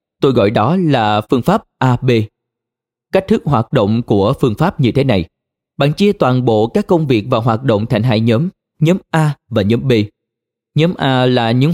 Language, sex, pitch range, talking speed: Vietnamese, male, 115-155 Hz, 200 wpm